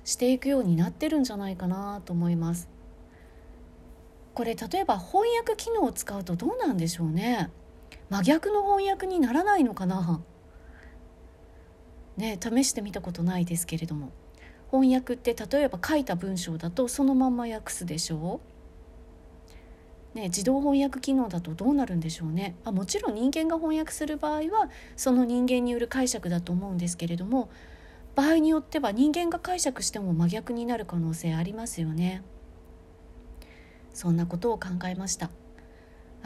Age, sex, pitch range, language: 40-59, female, 160-250 Hz, Japanese